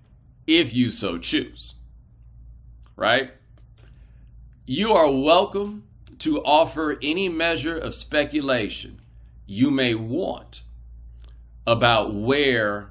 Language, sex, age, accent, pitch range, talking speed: English, male, 40-59, American, 80-130 Hz, 90 wpm